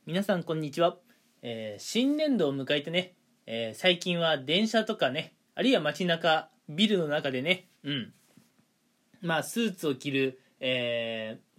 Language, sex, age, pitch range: Japanese, male, 20-39, 145-230 Hz